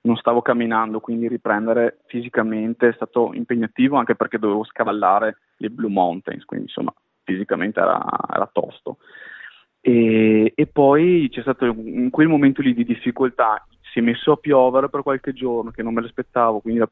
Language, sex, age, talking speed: Italian, male, 20-39, 165 wpm